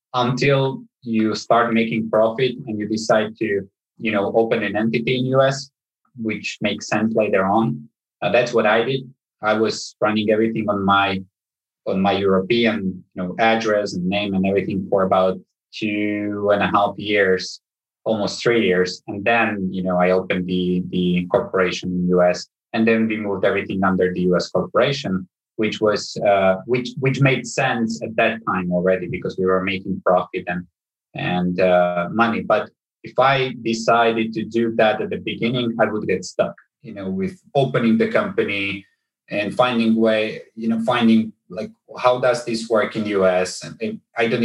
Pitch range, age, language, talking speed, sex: 95-115 Hz, 20-39, English, 175 wpm, male